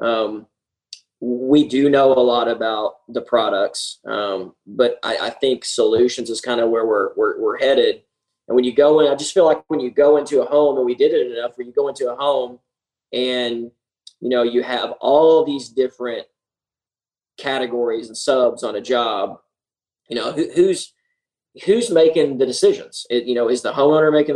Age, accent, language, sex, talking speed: 20-39, American, English, male, 190 wpm